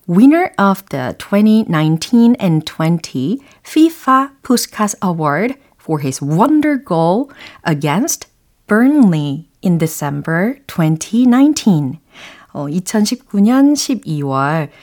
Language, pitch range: Korean, 160-265 Hz